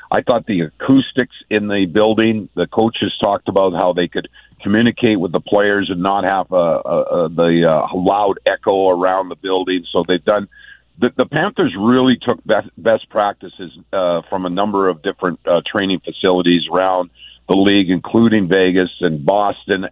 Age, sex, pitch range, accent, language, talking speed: 50-69, male, 90-105 Hz, American, English, 165 wpm